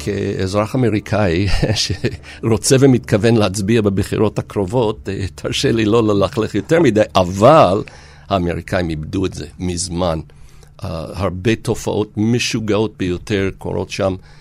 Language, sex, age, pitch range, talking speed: Hebrew, male, 50-69, 95-115 Hz, 110 wpm